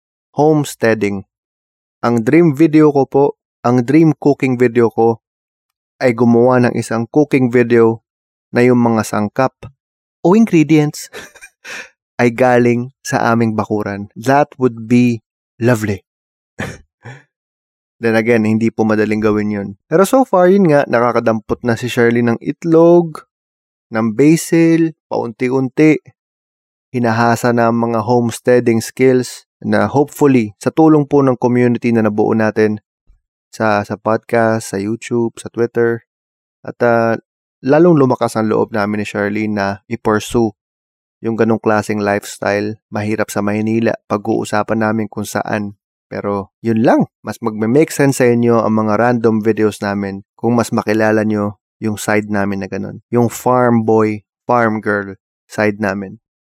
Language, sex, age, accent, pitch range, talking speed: English, male, 20-39, Filipino, 105-125 Hz, 135 wpm